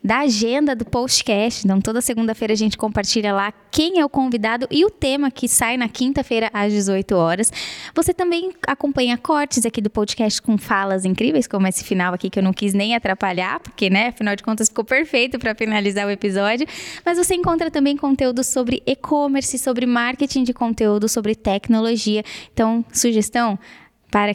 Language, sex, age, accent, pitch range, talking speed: Portuguese, female, 10-29, Brazilian, 205-255 Hz, 175 wpm